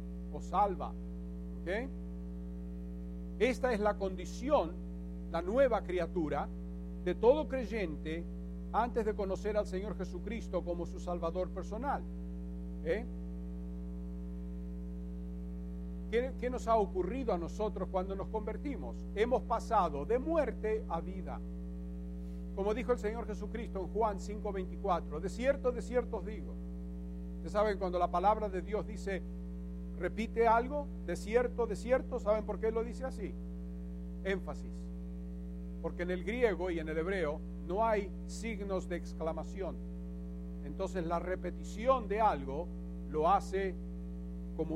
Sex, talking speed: male, 125 wpm